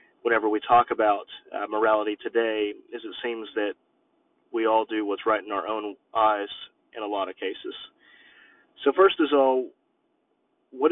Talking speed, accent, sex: 160 wpm, American, male